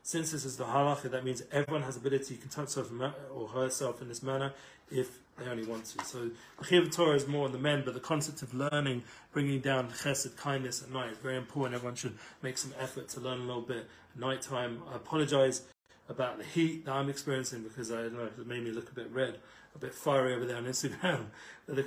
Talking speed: 240 wpm